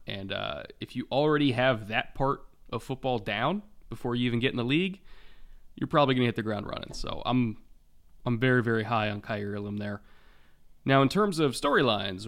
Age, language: 20-39, English